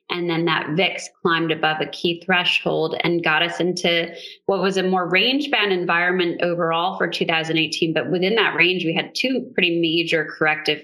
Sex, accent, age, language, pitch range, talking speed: female, American, 20-39, English, 165-185 Hz, 175 wpm